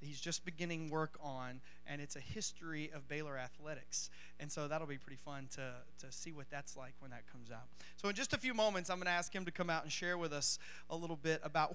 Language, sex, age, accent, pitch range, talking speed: English, male, 30-49, American, 125-170 Hz, 255 wpm